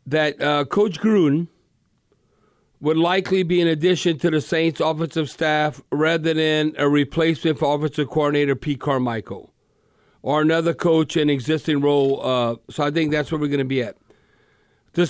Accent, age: American, 50-69